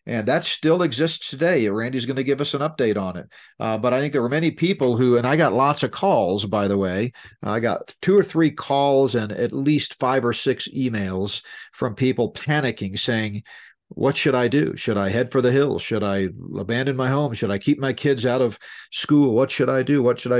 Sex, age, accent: male, 40-59, American